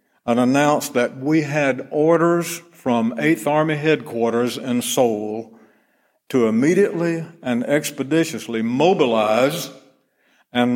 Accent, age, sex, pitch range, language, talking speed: American, 60-79, male, 115-150 Hz, English, 100 wpm